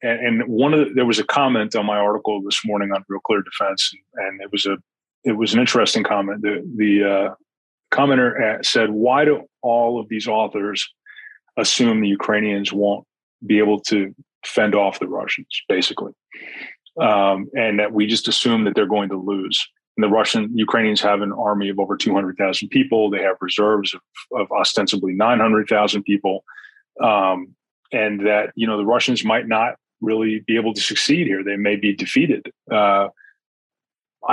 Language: English